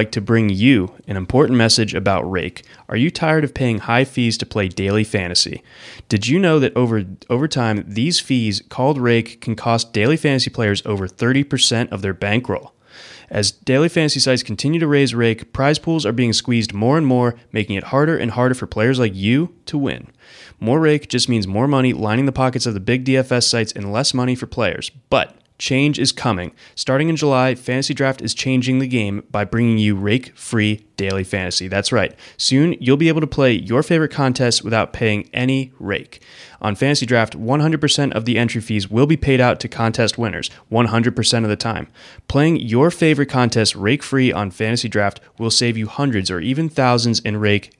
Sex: male